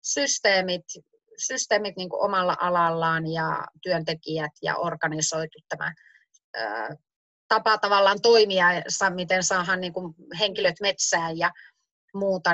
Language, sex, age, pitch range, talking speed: Finnish, female, 30-49, 170-220 Hz, 90 wpm